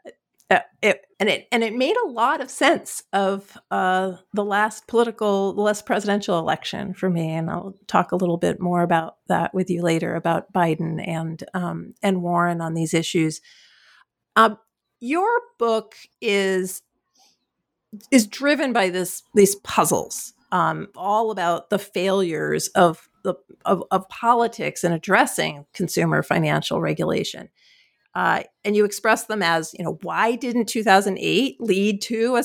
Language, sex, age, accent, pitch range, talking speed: English, female, 50-69, American, 175-220 Hz, 150 wpm